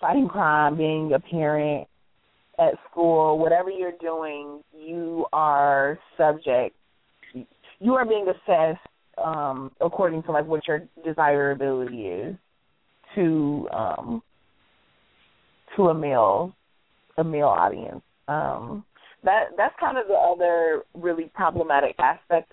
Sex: female